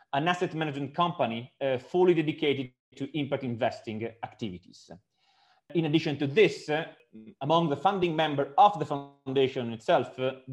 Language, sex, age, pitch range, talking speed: English, male, 30-49, 130-165 Hz, 140 wpm